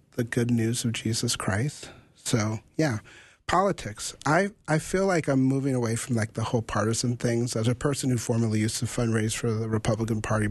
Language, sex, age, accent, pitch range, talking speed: English, male, 40-59, American, 110-130 Hz, 195 wpm